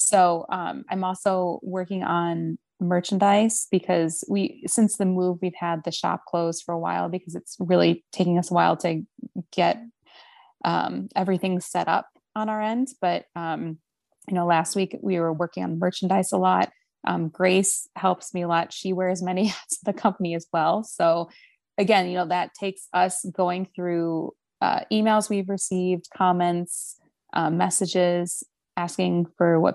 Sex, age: female, 20-39